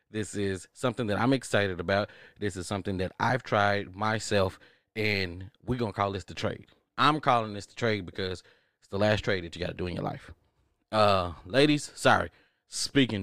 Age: 30-49